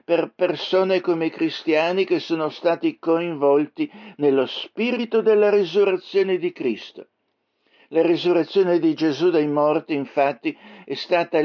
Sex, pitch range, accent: male, 135-175 Hz, native